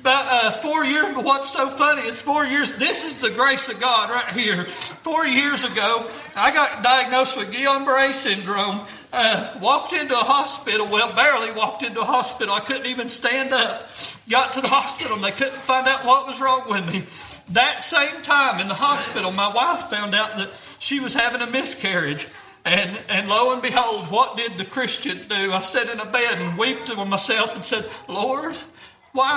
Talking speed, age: 195 wpm, 40-59